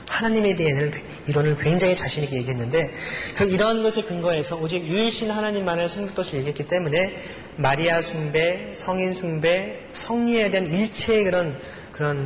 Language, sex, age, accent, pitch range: Korean, male, 30-49, native, 145-200 Hz